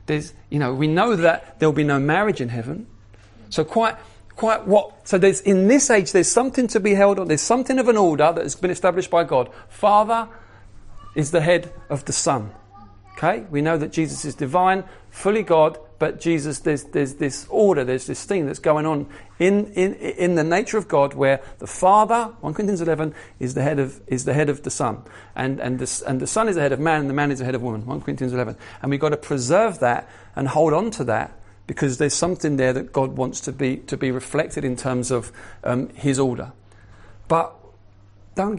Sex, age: male, 40-59